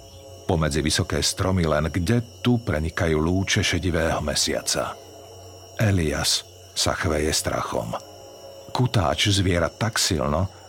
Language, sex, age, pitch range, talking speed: Slovak, male, 50-69, 90-110 Hz, 100 wpm